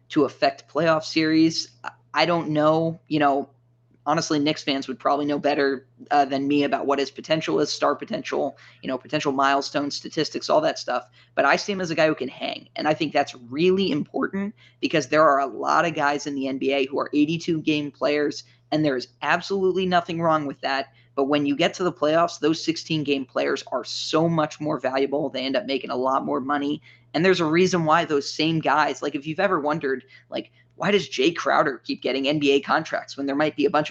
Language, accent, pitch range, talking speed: English, American, 140-165 Hz, 220 wpm